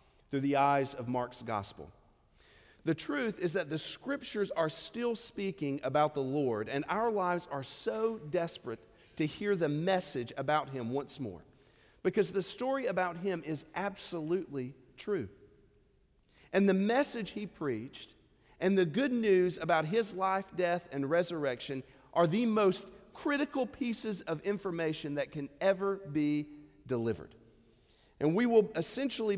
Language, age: English, 40-59